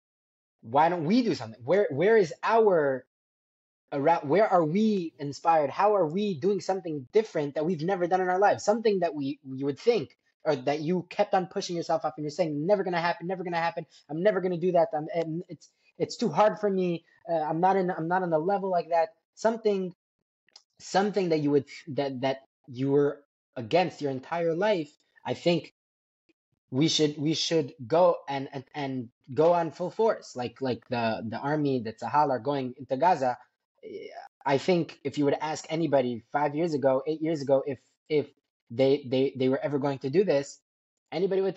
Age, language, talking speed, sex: 20-39, English, 205 wpm, male